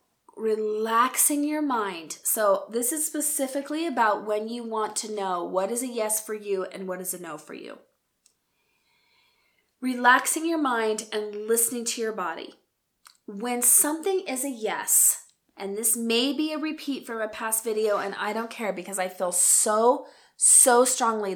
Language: English